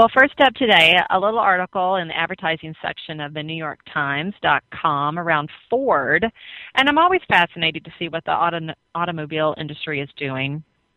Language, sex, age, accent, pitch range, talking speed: English, female, 30-49, American, 155-200 Hz, 175 wpm